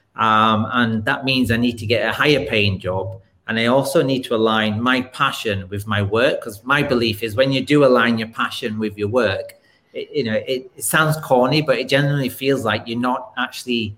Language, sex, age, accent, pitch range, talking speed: English, male, 30-49, British, 110-135 Hz, 215 wpm